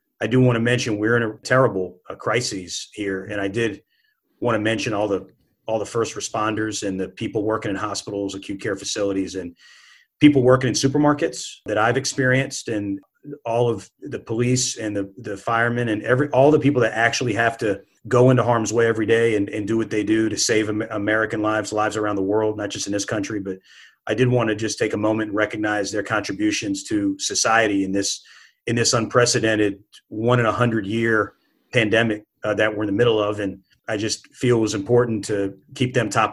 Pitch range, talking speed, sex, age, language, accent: 105-120 Hz, 210 wpm, male, 30-49, English, American